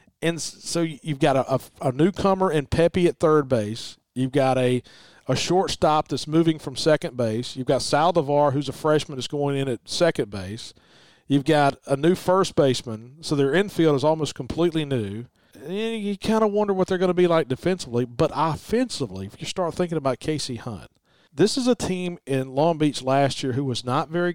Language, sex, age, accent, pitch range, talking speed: English, male, 40-59, American, 135-180 Hz, 200 wpm